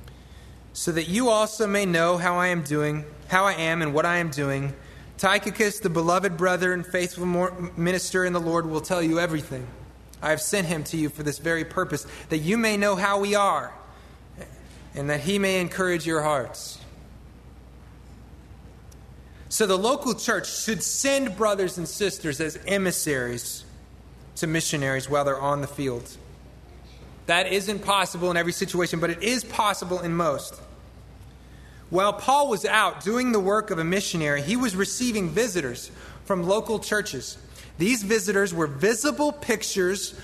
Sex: male